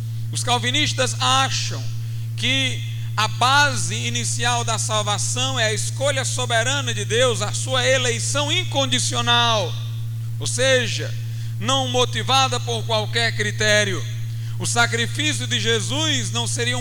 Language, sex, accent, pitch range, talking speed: Portuguese, male, Brazilian, 115-120 Hz, 115 wpm